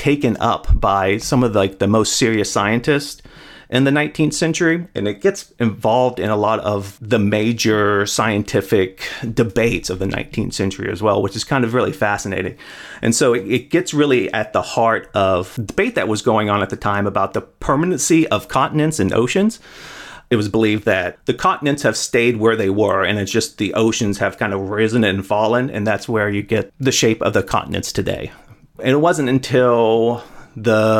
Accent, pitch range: American, 105-130 Hz